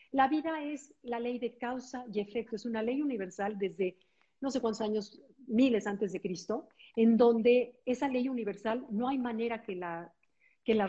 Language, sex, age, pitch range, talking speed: Spanish, female, 50-69, 205-260 Hz, 180 wpm